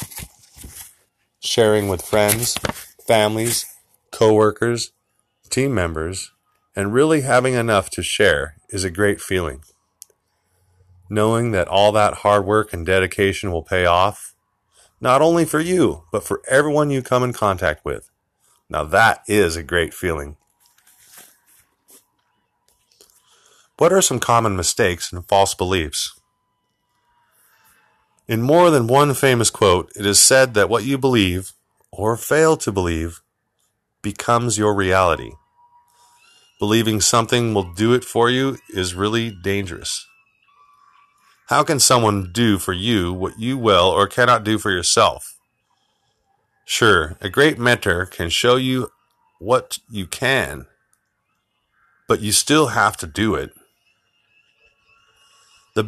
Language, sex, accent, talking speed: English, male, American, 125 wpm